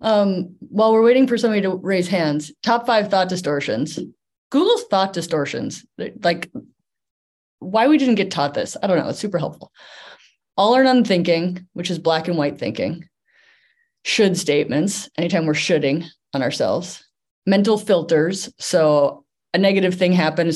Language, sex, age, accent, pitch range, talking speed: English, female, 20-39, American, 155-195 Hz, 155 wpm